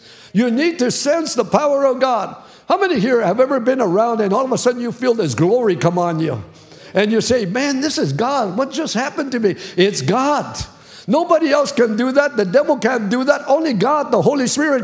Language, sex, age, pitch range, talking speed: English, male, 50-69, 220-310 Hz, 225 wpm